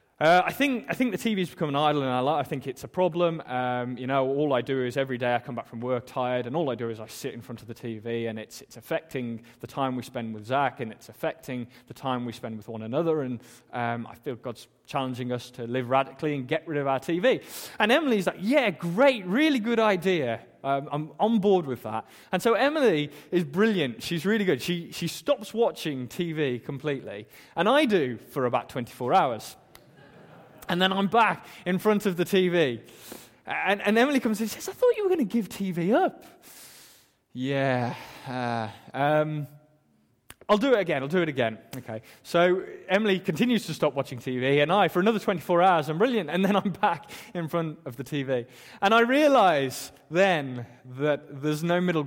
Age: 20-39